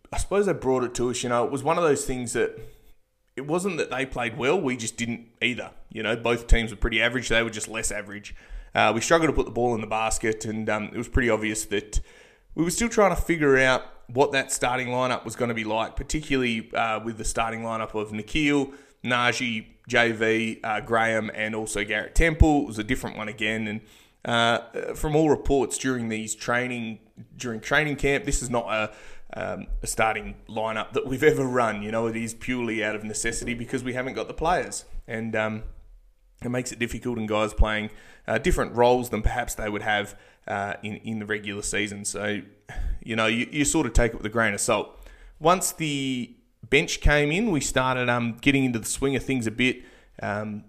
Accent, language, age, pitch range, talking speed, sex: Australian, English, 20-39, 110-130 Hz, 220 wpm, male